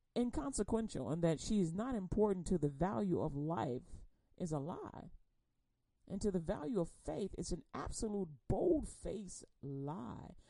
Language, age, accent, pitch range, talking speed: English, 40-59, American, 165-225 Hz, 155 wpm